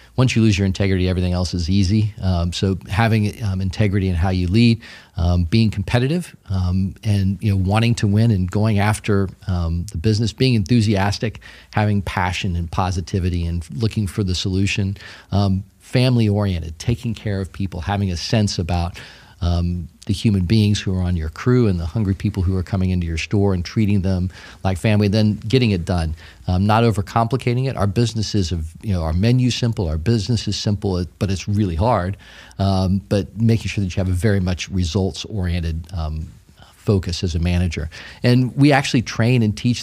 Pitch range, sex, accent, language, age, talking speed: 90-110 Hz, male, American, English, 40-59, 190 wpm